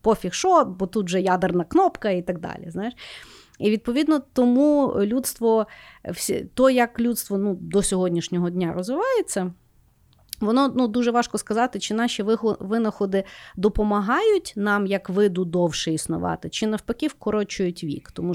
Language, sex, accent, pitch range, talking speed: Ukrainian, female, native, 180-240 Hz, 140 wpm